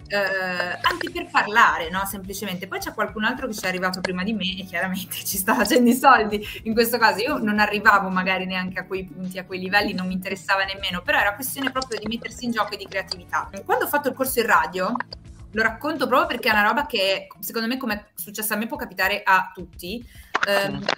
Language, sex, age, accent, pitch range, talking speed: Italian, female, 20-39, native, 185-265 Hz, 230 wpm